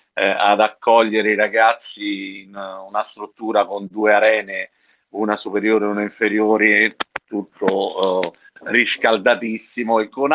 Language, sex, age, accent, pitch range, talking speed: Italian, male, 50-69, native, 105-120 Hz, 110 wpm